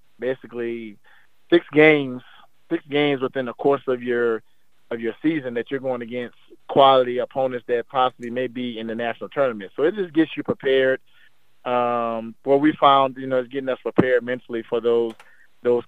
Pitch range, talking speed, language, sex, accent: 115-130 Hz, 180 wpm, English, male, American